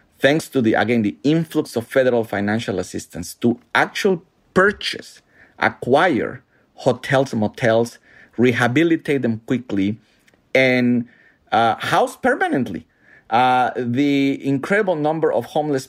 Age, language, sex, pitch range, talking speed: 50-69, English, male, 115-140 Hz, 115 wpm